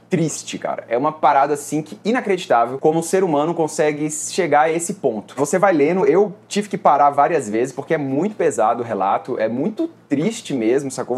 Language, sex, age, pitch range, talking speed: Portuguese, male, 20-39, 140-190 Hz, 205 wpm